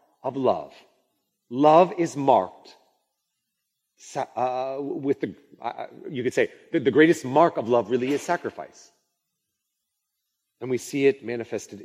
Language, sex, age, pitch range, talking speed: English, male, 30-49, 120-160 Hz, 130 wpm